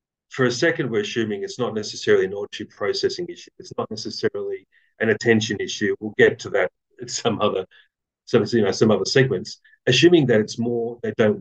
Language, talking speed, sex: English, 170 wpm, male